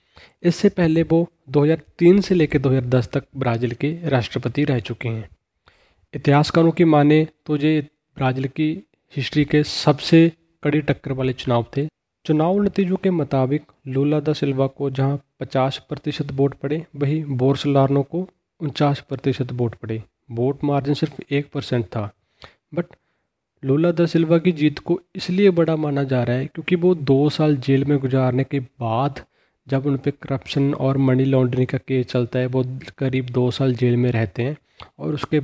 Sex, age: male, 30-49